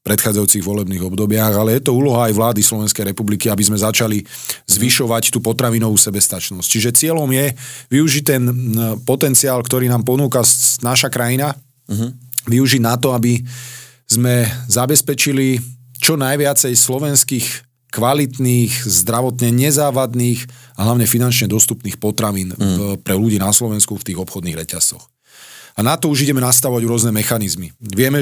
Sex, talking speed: male, 135 wpm